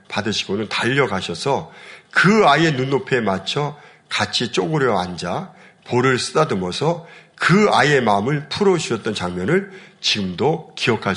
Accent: native